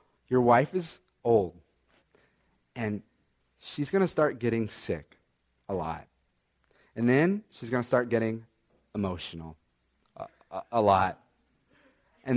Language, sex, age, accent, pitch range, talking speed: English, male, 30-49, American, 110-160 Hz, 125 wpm